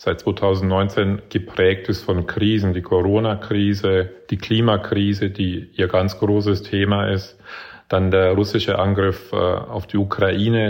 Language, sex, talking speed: German, male, 130 wpm